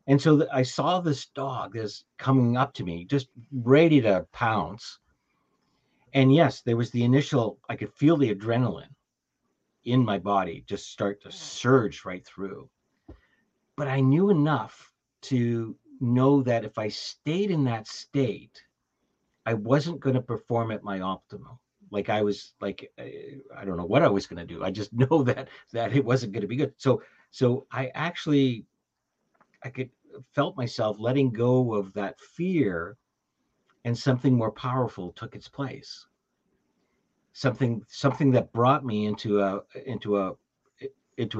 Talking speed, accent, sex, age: 160 wpm, American, male, 50-69